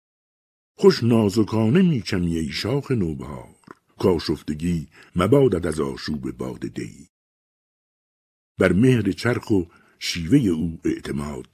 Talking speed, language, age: 105 wpm, Persian, 60-79